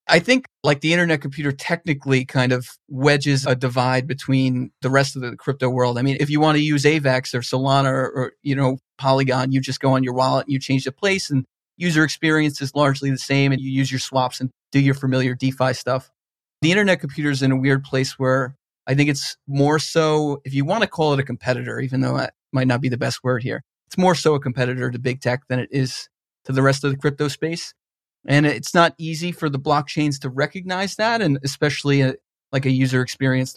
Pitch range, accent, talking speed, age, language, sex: 130-145 Hz, American, 230 wpm, 30-49, English, male